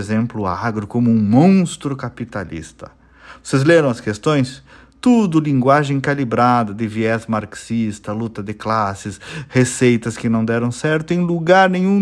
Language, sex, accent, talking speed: Portuguese, male, Brazilian, 140 wpm